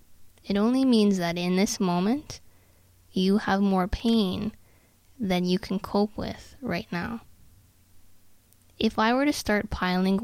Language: English